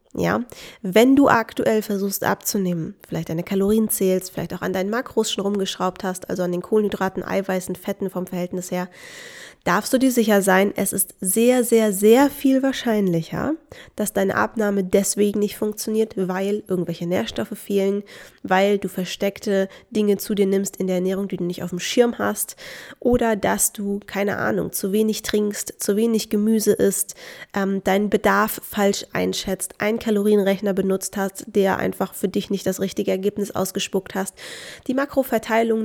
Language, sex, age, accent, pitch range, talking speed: German, female, 20-39, German, 190-220 Hz, 165 wpm